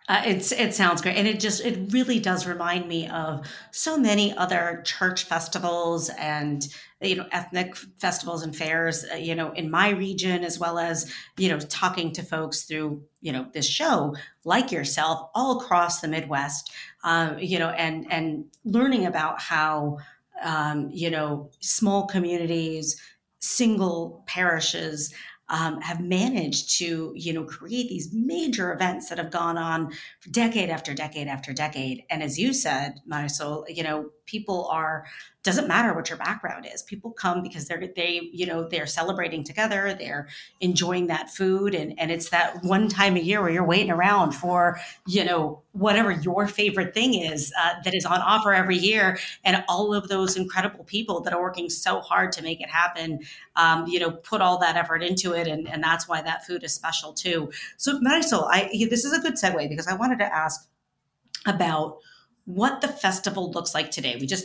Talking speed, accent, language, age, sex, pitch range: 180 wpm, American, English, 40-59, female, 160-190 Hz